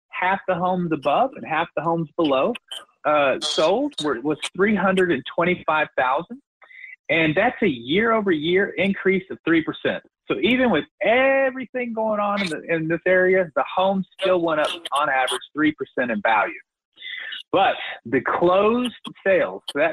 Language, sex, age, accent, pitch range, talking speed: English, male, 30-49, American, 160-205 Hz, 160 wpm